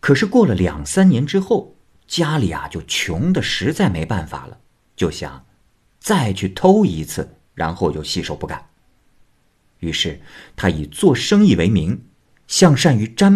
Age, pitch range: 50-69, 85-130 Hz